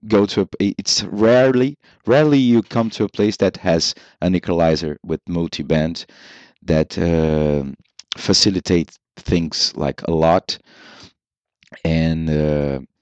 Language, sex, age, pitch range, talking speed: English, male, 30-49, 85-105 Hz, 120 wpm